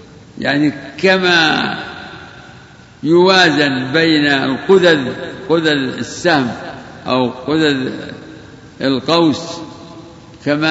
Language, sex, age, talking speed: Arabic, male, 60-79, 60 wpm